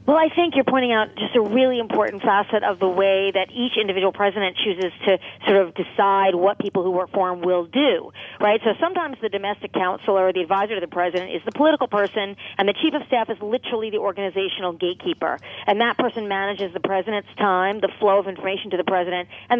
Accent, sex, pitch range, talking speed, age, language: American, female, 185-230 Hz, 220 wpm, 40-59, English